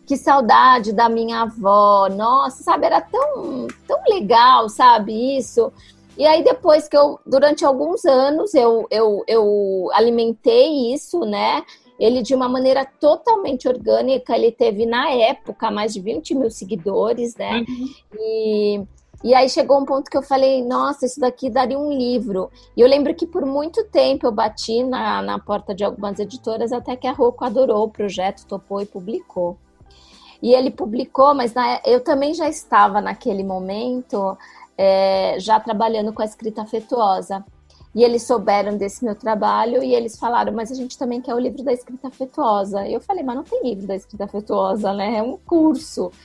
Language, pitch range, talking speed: Portuguese, 210-270 Hz, 175 wpm